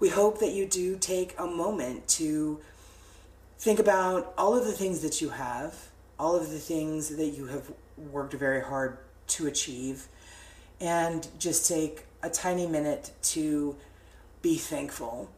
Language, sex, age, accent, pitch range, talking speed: English, female, 30-49, American, 130-165 Hz, 150 wpm